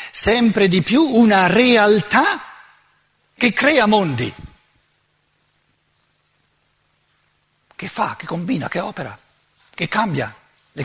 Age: 60-79